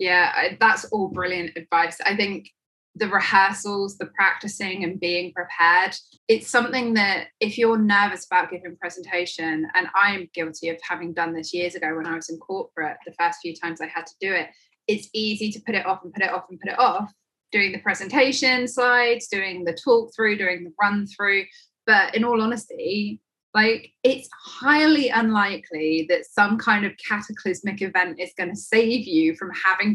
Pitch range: 175-225 Hz